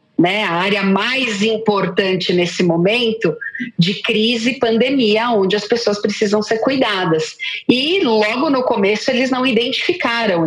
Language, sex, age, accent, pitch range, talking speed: Portuguese, female, 40-59, Brazilian, 205-270 Hz, 140 wpm